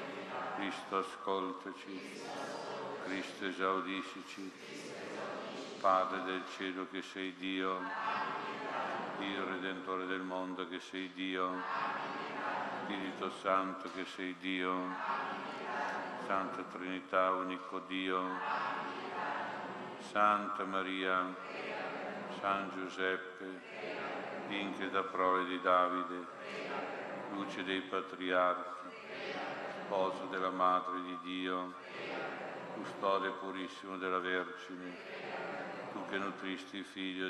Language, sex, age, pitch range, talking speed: Italian, male, 60-79, 90-95 Hz, 80 wpm